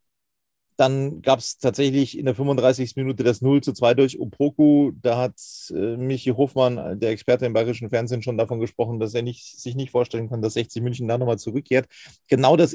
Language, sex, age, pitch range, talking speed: German, male, 40-59, 115-135 Hz, 200 wpm